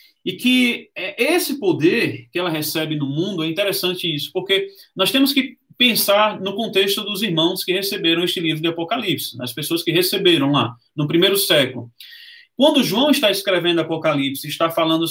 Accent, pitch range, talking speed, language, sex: Brazilian, 160-230 Hz, 165 wpm, Portuguese, male